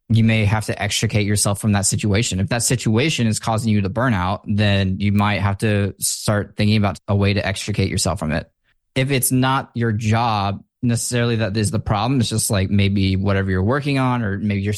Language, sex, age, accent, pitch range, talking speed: English, male, 20-39, American, 100-115 Hz, 215 wpm